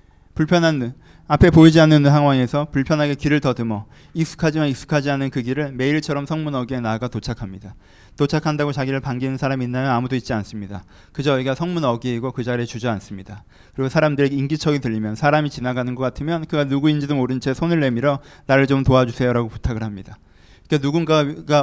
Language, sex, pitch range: Korean, male, 115-155 Hz